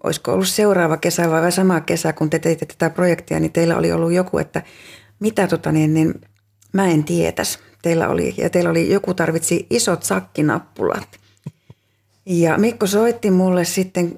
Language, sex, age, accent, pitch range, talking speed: Finnish, female, 30-49, native, 155-185 Hz, 170 wpm